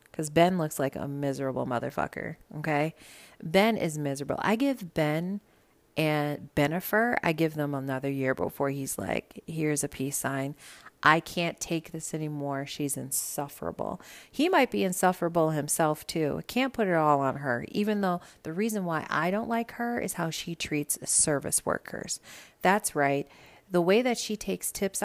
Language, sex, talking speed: English, female, 170 wpm